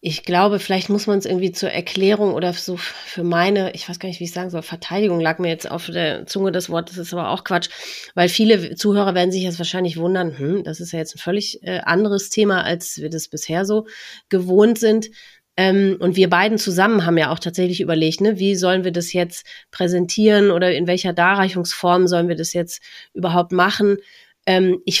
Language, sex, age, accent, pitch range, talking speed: German, female, 30-49, German, 170-195 Hz, 210 wpm